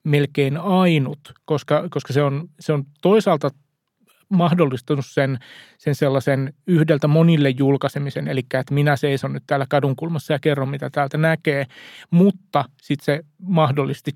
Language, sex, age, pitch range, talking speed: Finnish, male, 30-49, 140-165 Hz, 135 wpm